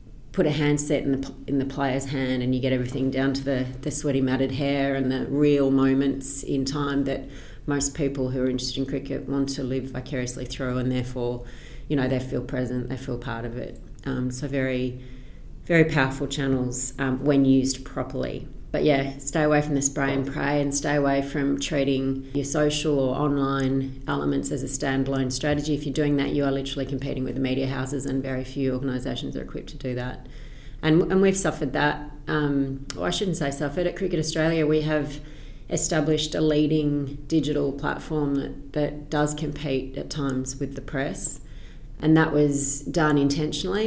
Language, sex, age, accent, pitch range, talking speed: English, female, 30-49, Australian, 130-150 Hz, 190 wpm